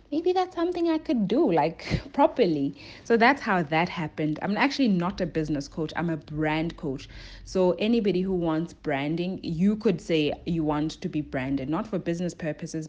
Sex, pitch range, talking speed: female, 145-180 Hz, 185 wpm